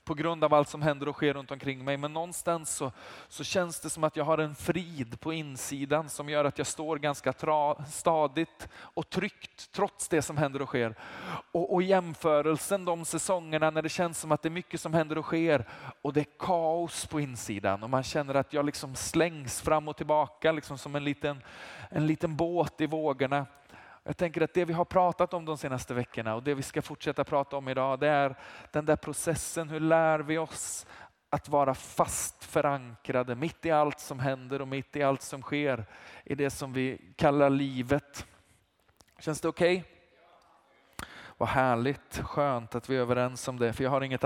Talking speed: 200 wpm